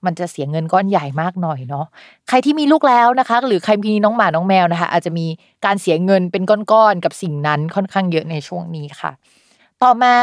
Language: Thai